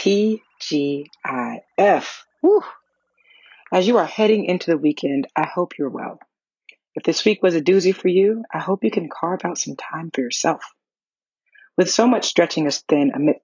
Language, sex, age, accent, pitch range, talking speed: English, female, 40-59, American, 140-210 Hz, 165 wpm